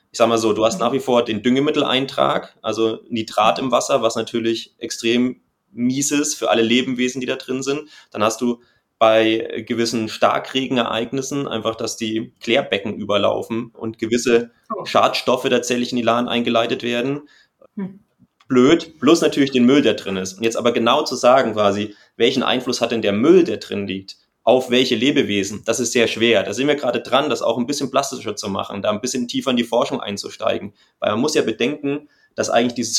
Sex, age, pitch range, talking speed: male, 30-49, 115-130 Hz, 195 wpm